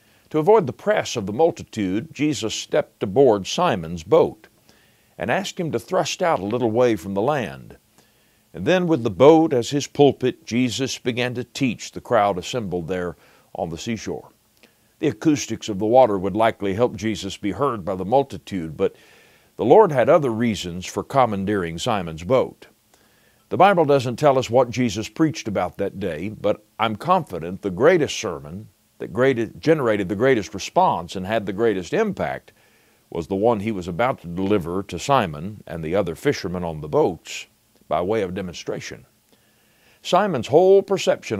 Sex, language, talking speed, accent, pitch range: male, English, 170 wpm, American, 100-140 Hz